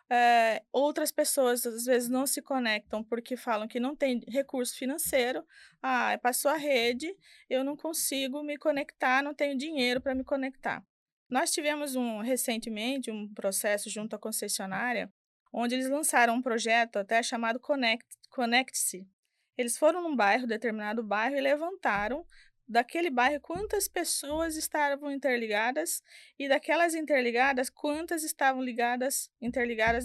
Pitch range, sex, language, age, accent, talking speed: 235-310 Hz, female, Portuguese, 20-39, Brazilian, 130 wpm